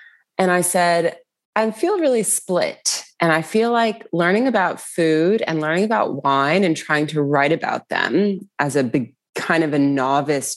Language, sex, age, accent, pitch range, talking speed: English, female, 20-39, American, 140-180 Hz, 175 wpm